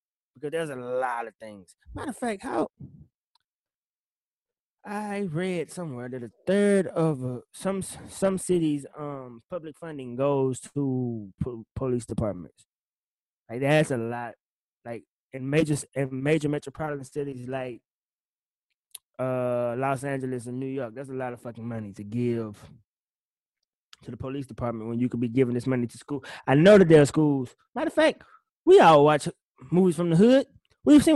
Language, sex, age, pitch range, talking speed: English, male, 20-39, 130-170 Hz, 165 wpm